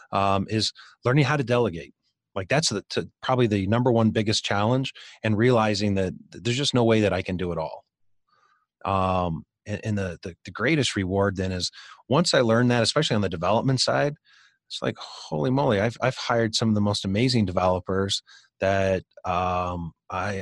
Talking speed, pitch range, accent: 190 wpm, 95-120 Hz, American